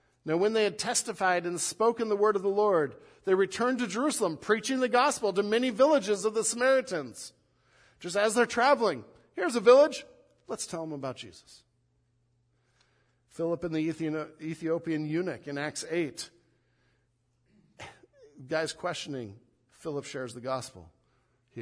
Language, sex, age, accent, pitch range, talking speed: English, male, 50-69, American, 120-195 Hz, 145 wpm